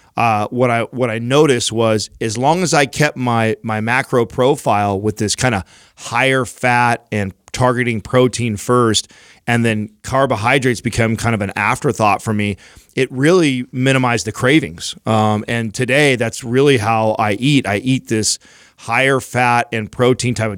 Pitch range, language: 115-135 Hz, English